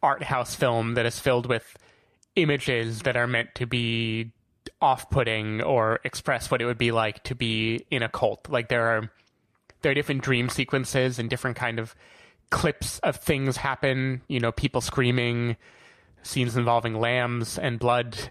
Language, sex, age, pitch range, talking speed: English, male, 20-39, 120-140 Hz, 165 wpm